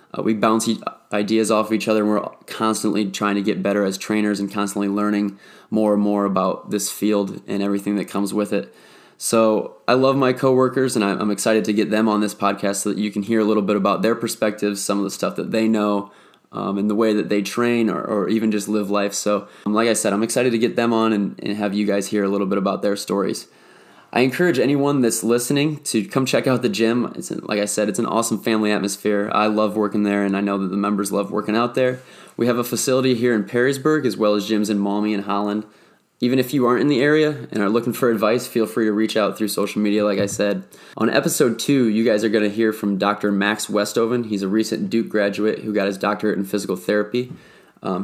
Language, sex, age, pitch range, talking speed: English, male, 20-39, 100-115 Hz, 245 wpm